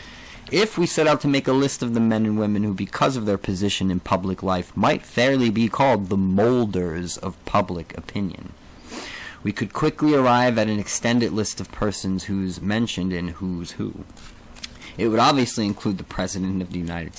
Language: English